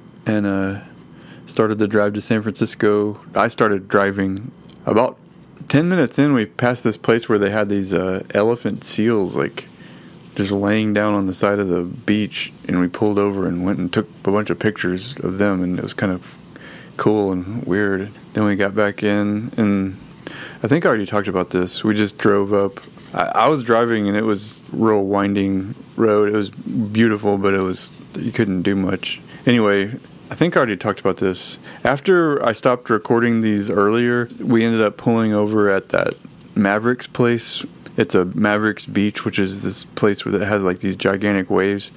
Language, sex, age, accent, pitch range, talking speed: English, male, 30-49, American, 100-110 Hz, 190 wpm